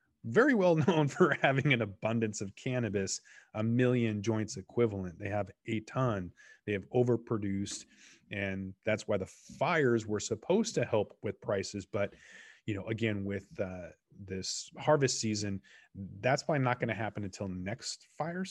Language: English